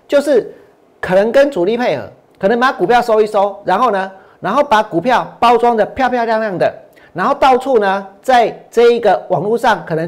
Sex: male